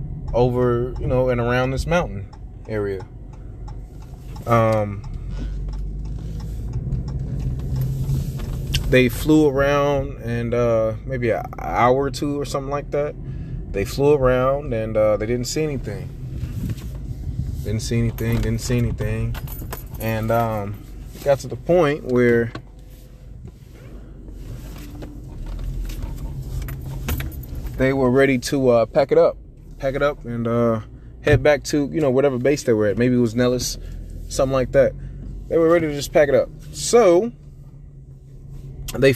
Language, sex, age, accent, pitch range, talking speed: English, male, 20-39, American, 115-135 Hz, 130 wpm